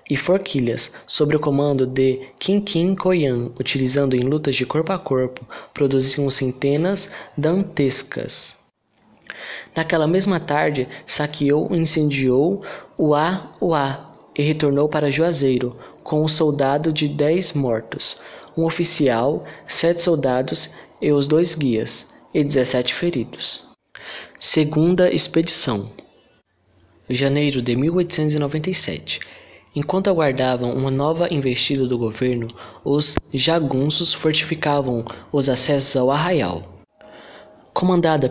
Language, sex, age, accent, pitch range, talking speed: Portuguese, male, 20-39, Brazilian, 130-160 Hz, 105 wpm